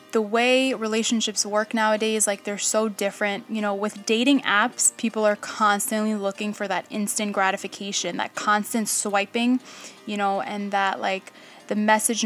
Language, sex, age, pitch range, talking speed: English, female, 10-29, 200-225 Hz, 155 wpm